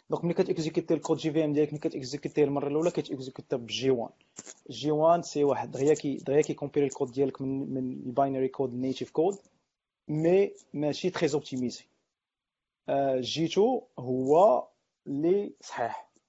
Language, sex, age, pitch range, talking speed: Arabic, male, 40-59, 140-165 Hz, 120 wpm